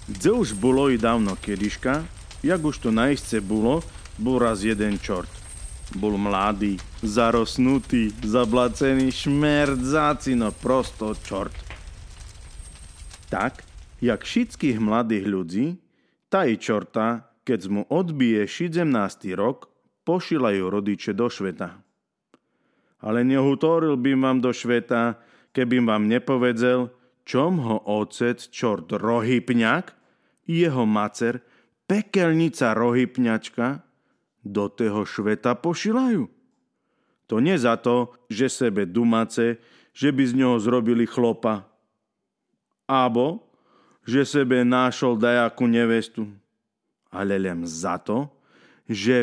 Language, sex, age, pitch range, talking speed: Slovak, male, 30-49, 105-130 Hz, 105 wpm